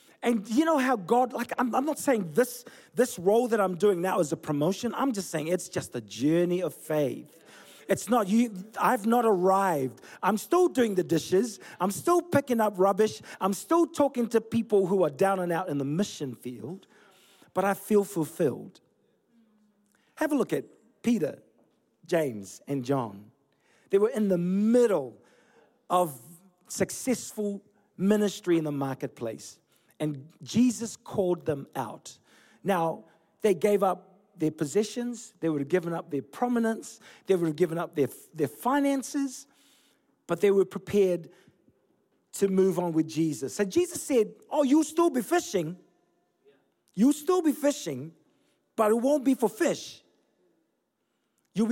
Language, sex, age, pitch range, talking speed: English, male, 40-59, 175-250 Hz, 160 wpm